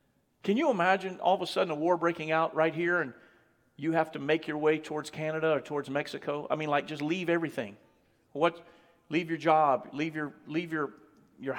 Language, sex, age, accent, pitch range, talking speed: English, male, 50-69, American, 150-185 Hz, 205 wpm